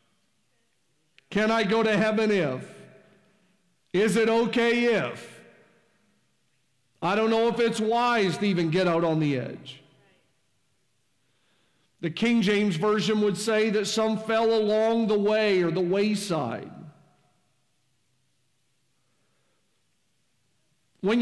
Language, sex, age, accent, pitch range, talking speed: English, male, 50-69, American, 145-225 Hz, 110 wpm